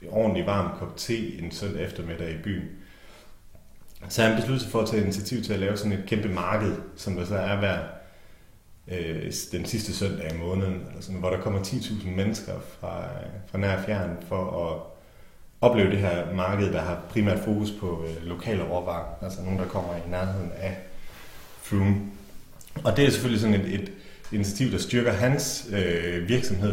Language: Danish